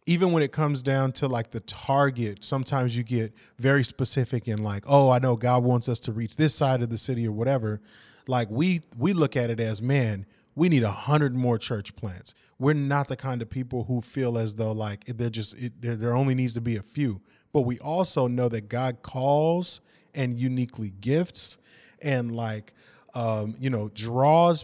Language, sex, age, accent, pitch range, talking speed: English, male, 30-49, American, 115-145 Hz, 200 wpm